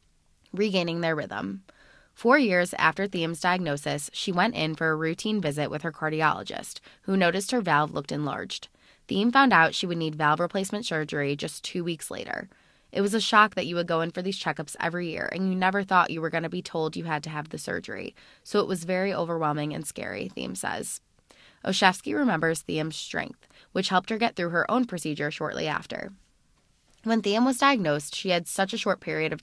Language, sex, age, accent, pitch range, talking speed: English, female, 20-39, American, 155-205 Hz, 205 wpm